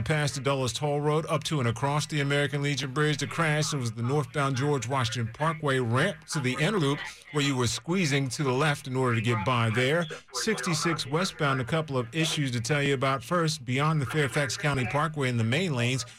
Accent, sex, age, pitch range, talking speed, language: American, male, 40-59, 120-150 Hz, 220 wpm, English